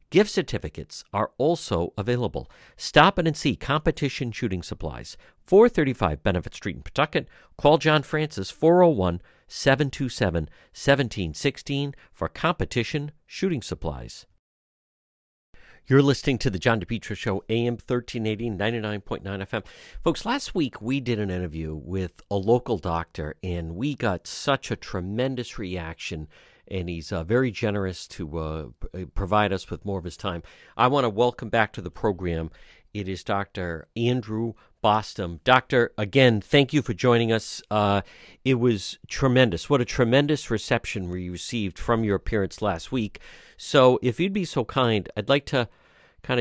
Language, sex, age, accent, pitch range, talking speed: English, male, 50-69, American, 95-130 Hz, 145 wpm